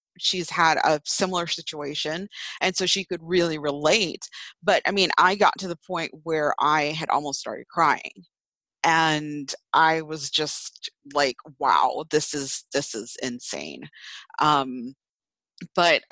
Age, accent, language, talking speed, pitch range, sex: 30-49, American, English, 140 wpm, 150-180 Hz, female